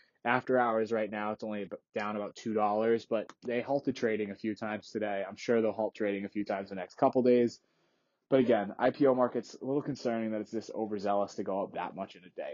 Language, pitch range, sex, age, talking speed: English, 105-125 Hz, male, 20-39, 230 wpm